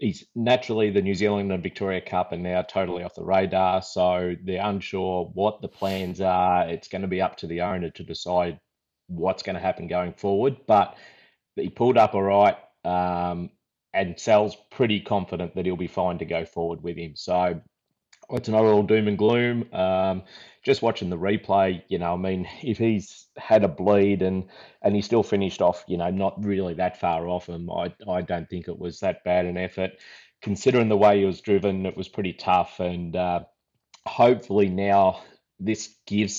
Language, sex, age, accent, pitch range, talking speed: English, male, 30-49, Australian, 90-105 Hz, 195 wpm